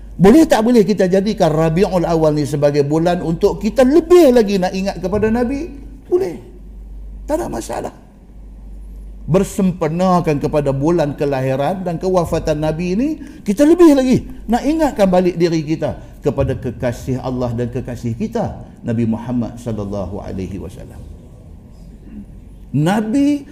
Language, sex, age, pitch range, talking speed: Malay, male, 50-69, 150-230 Hz, 130 wpm